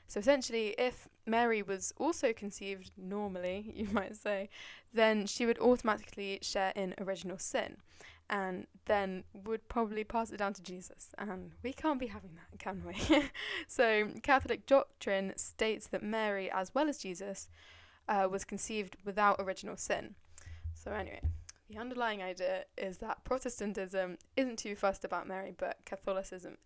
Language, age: English, 10-29